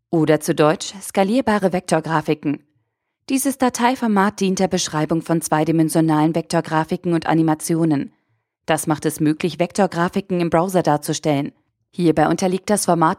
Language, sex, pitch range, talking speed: German, female, 155-190 Hz, 125 wpm